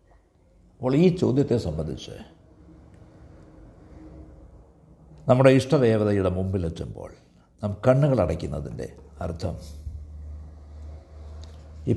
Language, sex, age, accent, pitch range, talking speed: Malayalam, male, 60-79, native, 80-120 Hz, 60 wpm